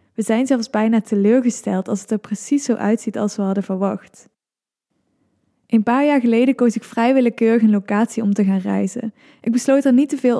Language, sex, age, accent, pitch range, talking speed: Dutch, female, 10-29, Dutch, 210-245 Hz, 195 wpm